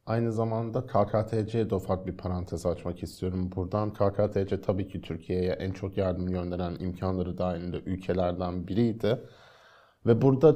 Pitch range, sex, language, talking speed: 95-115 Hz, male, Turkish, 135 wpm